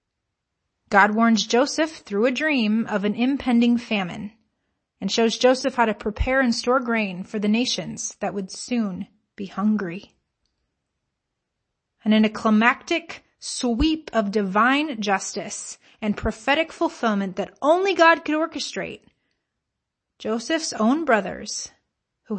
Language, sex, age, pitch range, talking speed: English, female, 30-49, 205-245 Hz, 125 wpm